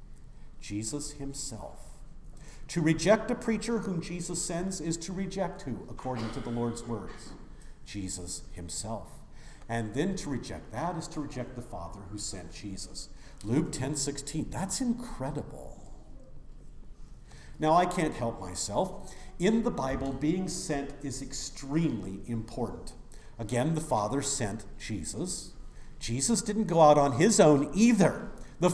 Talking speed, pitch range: 135 wpm, 120-190 Hz